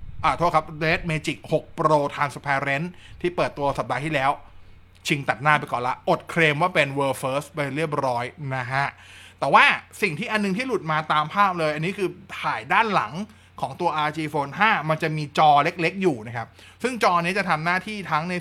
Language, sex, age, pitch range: Thai, male, 20-39, 140-180 Hz